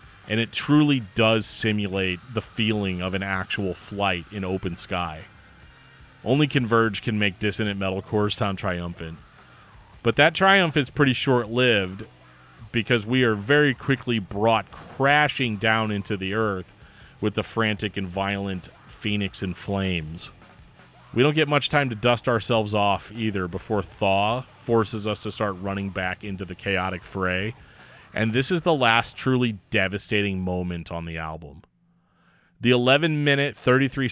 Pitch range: 95-115 Hz